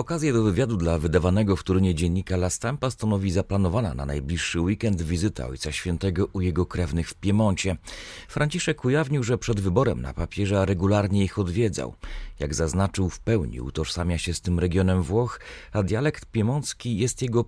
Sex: male